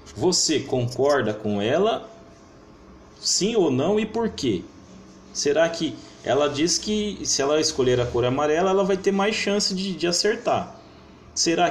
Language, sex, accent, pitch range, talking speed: Portuguese, male, Brazilian, 105-160 Hz, 155 wpm